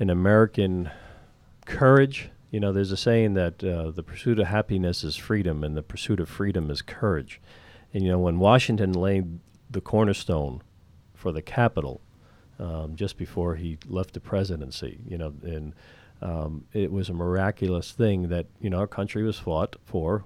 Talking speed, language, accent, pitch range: 170 wpm, English, American, 90-120 Hz